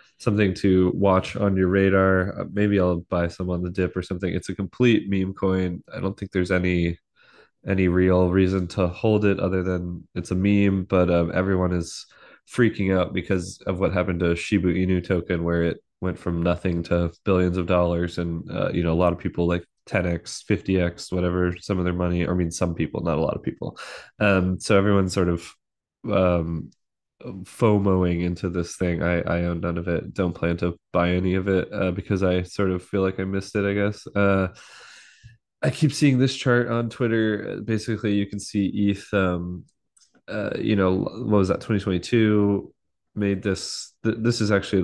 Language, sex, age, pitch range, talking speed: English, male, 20-39, 90-100 Hz, 195 wpm